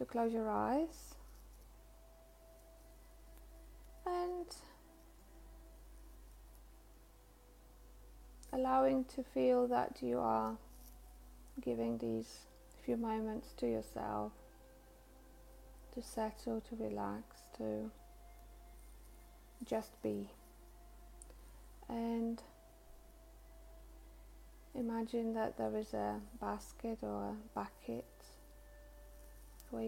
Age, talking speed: 30-49, 70 wpm